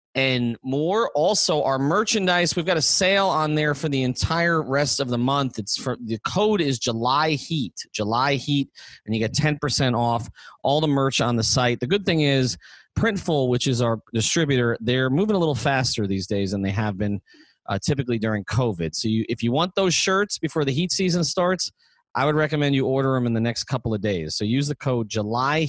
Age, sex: 30-49, male